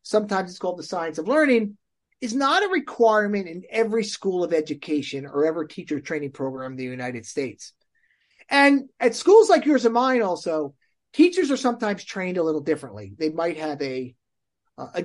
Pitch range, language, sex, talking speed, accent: 155-245 Hz, English, male, 180 wpm, American